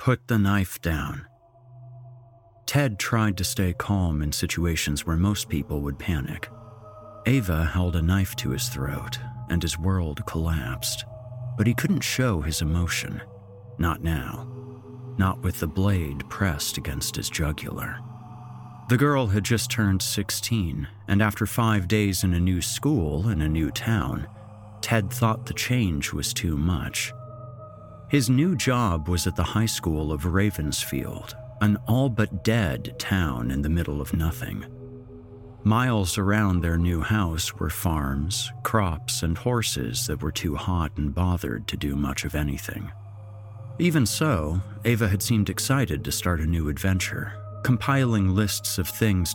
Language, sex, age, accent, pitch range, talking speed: English, male, 40-59, American, 85-120 Hz, 150 wpm